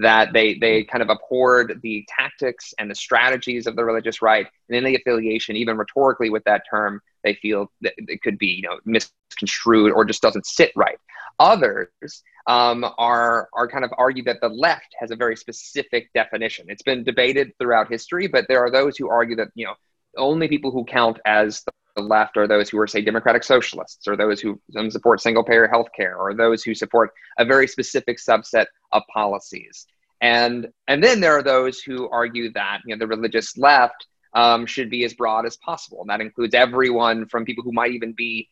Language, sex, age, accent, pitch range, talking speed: English, male, 20-39, American, 110-135 Hz, 200 wpm